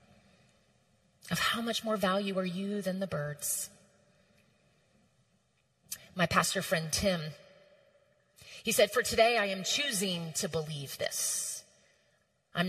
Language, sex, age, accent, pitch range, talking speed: English, female, 30-49, American, 165-215 Hz, 120 wpm